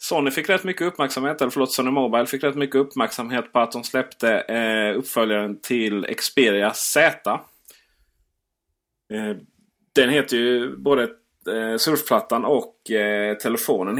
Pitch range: 110-140 Hz